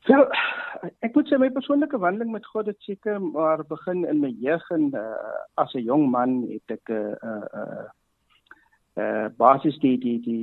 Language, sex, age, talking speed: English, male, 50-69, 150 wpm